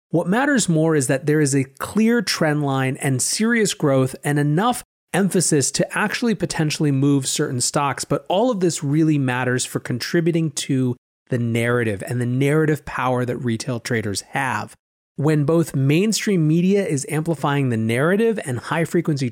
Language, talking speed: English, 160 wpm